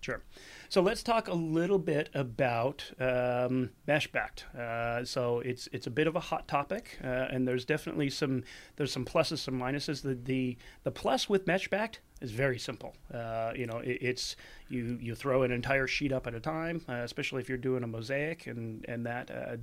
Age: 30-49